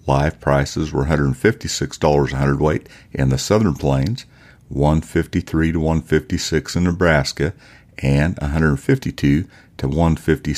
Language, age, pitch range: English, 50-69, 70-90 Hz